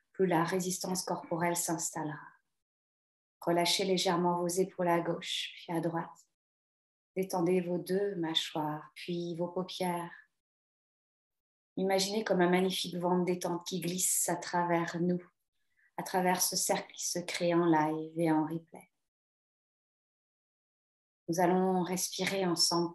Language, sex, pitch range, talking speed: French, female, 165-195 Hz, 130 wpm